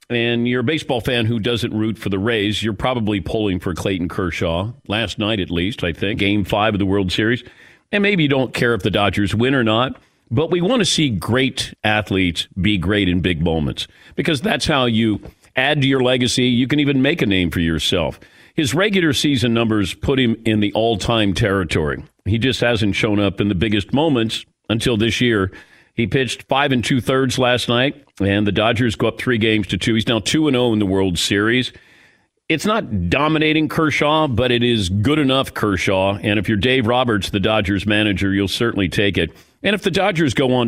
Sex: male